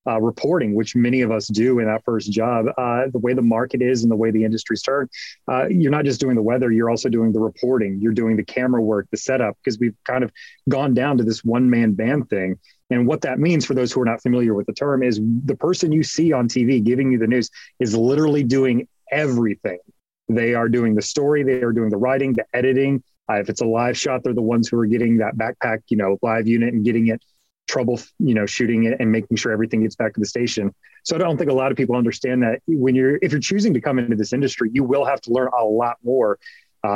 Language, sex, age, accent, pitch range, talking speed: English, male, 30-49, American, 110-130 Hz, 255 wpm